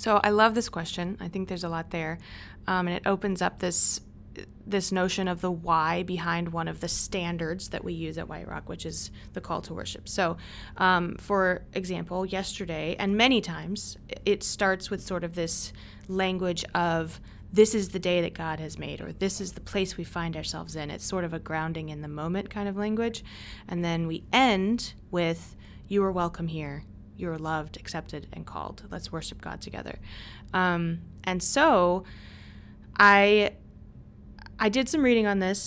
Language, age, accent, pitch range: English, 20-39, American, 160-195 Hz